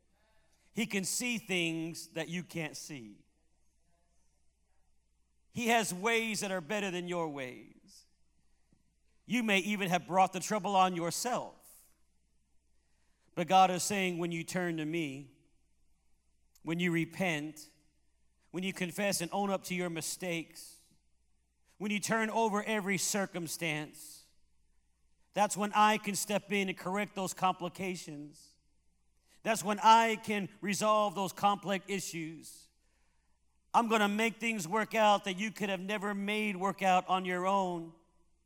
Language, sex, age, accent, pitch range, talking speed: English, male, 50-69, American, 150-205 Hz, 140 wpm